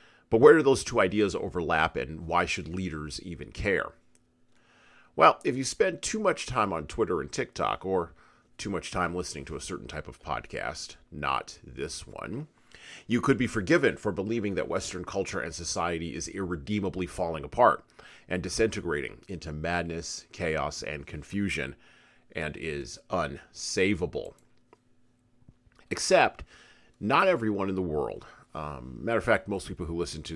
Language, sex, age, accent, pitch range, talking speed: English, male, 40-59, American, 85-115 Hz, 155 wpm